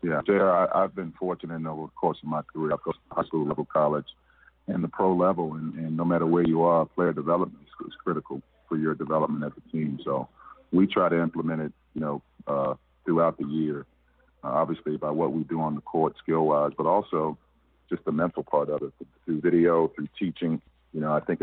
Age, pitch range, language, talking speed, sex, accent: 40-59, 75-80 Hz, English, 220 wpm, male, American